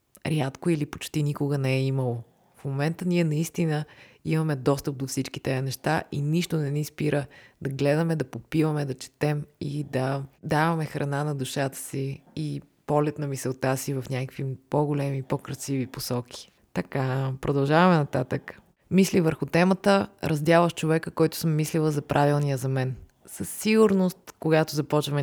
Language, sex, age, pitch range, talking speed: Bulgarian, female, 20-39, 130-160 Hz, 150 wpm